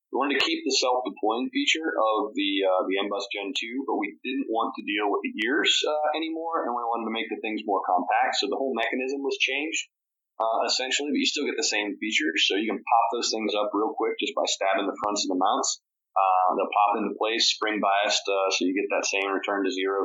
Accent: American